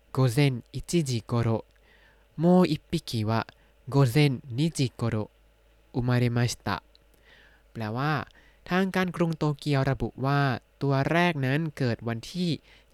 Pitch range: 115-150 Hz